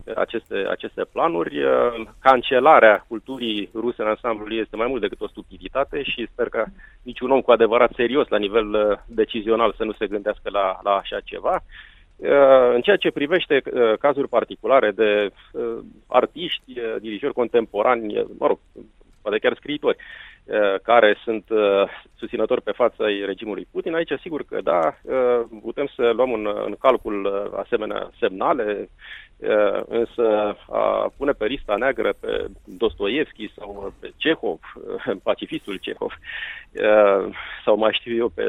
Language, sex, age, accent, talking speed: Romanian, male, 30-49, native, 130 wpm